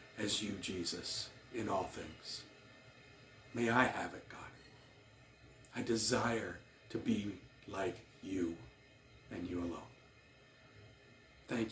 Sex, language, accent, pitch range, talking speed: male, English, American, 105-130 Hz, 110 wpm